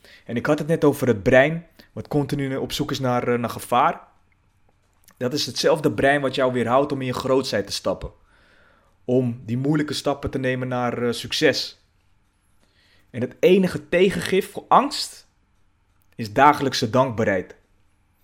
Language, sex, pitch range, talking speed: Dutch, male, 105-135 Hz, 155 wpm